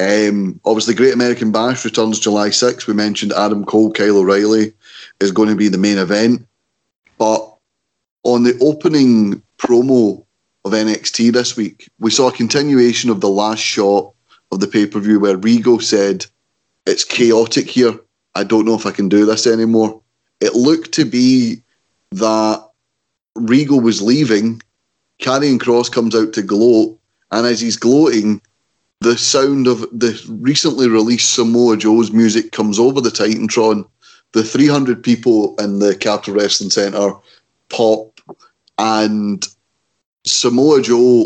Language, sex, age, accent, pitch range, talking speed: English, male, 30-49, British, 105-120 Hz, 145 wpm